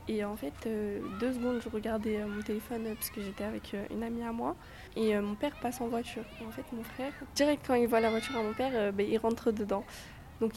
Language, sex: French, female